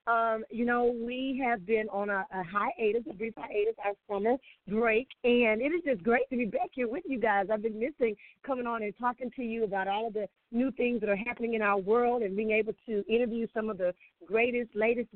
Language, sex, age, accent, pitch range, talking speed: English, female, 40-59, American, 195-230 Hz, 235 wpm